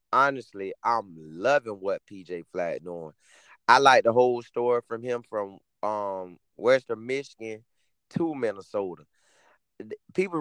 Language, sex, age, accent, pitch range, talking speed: English, male, 30-49, American, 115-165 Hz, 120 wpm